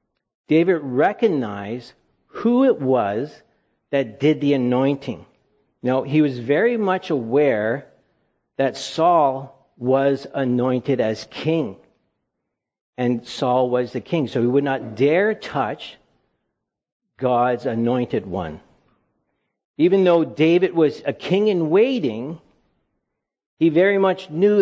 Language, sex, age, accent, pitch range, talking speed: English, male, 50-69, American, 125-165 Hz, 115 wpm